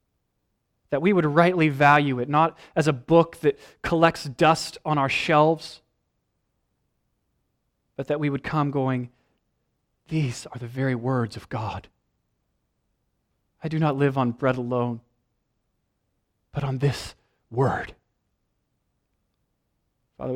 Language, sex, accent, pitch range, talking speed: English, male, American, 130-190 Hz, 120 wpm